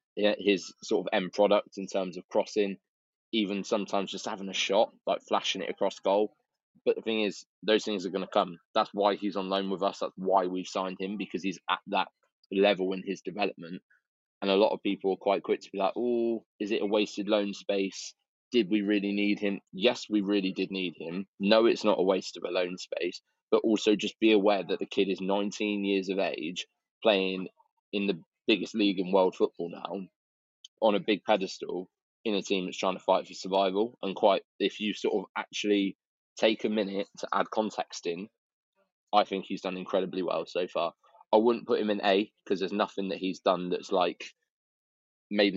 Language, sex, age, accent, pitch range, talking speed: English, male, 20-39, British, 95-105 Hz, 210 wpm